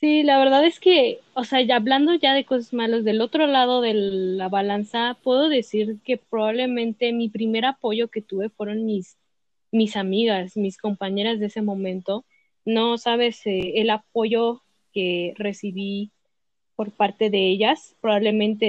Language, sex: Spanish, female